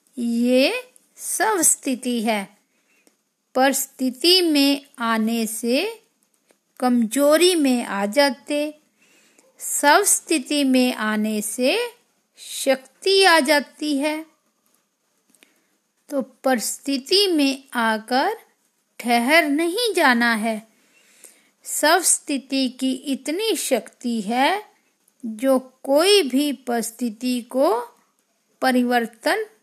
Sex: female